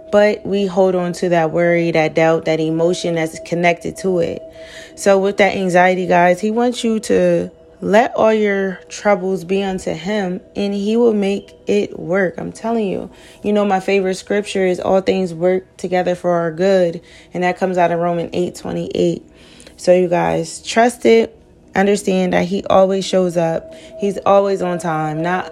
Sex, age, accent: female, 20-39, American